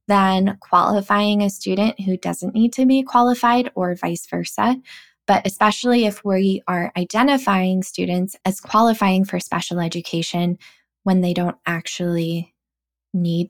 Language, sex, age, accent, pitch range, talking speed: English, female, 20-39, American, 175-215 Hz, 135 wpm